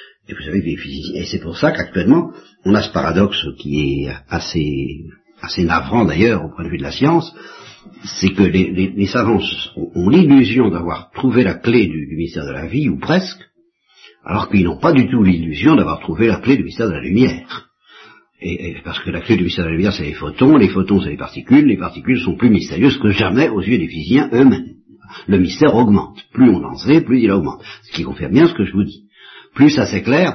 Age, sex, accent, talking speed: 60-79, male, French, 225 wpm